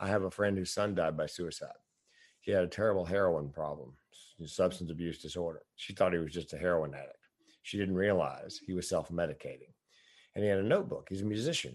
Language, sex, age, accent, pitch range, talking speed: English, male, 50-69, American, 85-100 Hz, 205 wpm